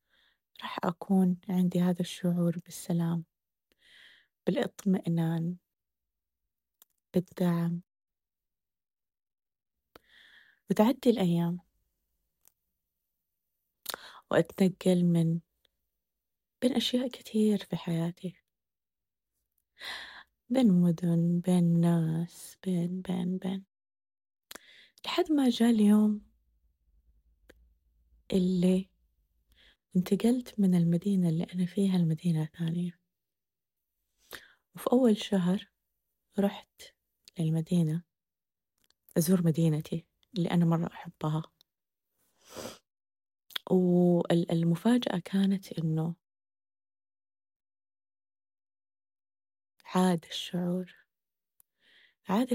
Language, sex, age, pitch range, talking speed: Arabic, female, 20-39, 160-190 Hz, 60 wpm